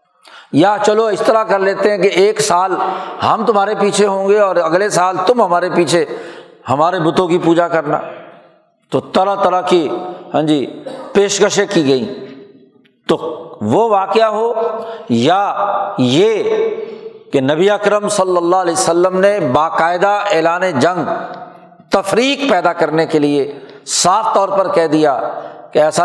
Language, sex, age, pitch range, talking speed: Urdu, male, 60-79, 170-220 Hz, 145 wpm